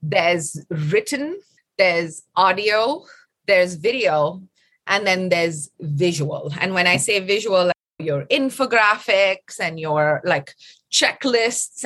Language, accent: English, Indian